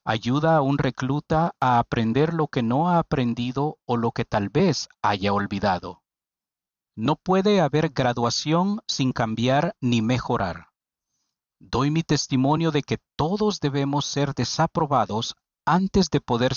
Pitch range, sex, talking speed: 115-150 Hz, male, 140 wpm